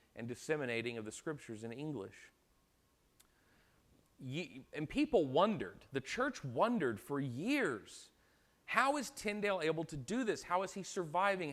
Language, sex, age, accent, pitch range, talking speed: English, male, 40-59, American, 115-155 Hz, 135 wpm